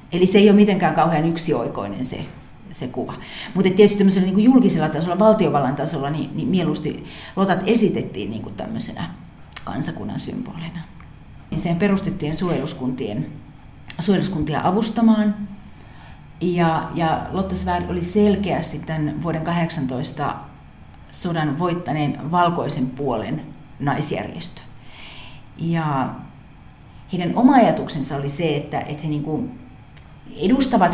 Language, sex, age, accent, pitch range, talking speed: Finnish, female, 40-59, native, 155-195 Hz, 110 wpm